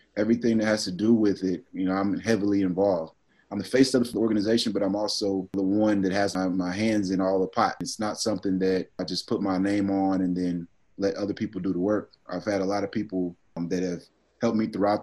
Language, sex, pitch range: English, male, 95-105 Hz